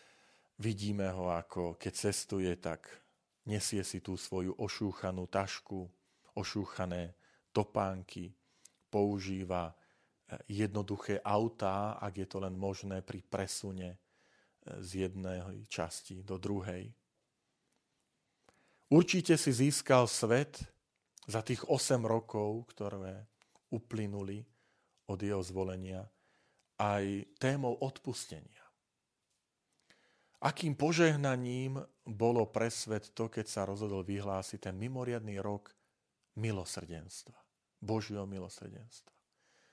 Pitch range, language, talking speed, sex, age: 95-120 Hz, Slovak, 90 wpm, male, 40-59